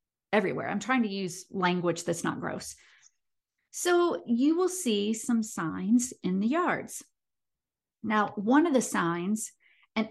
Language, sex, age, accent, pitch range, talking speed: English, female, 40-59, American, 180-230 Hz, 140 wpm